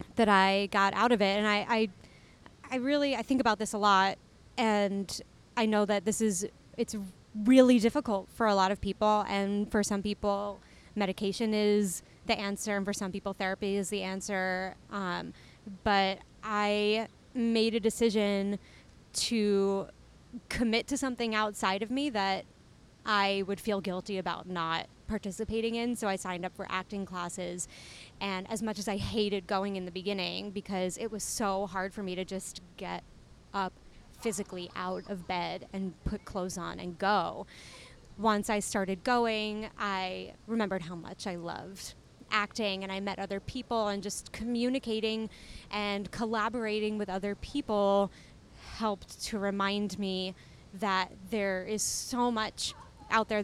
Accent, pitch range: American, 190-220 Hz